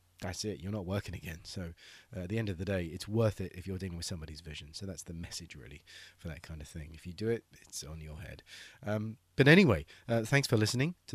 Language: English